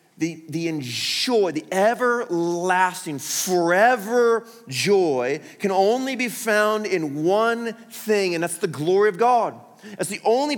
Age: 30-49